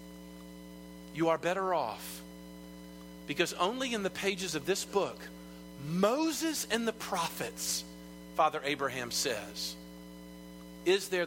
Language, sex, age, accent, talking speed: English, male, 40-59, American, 110 wpm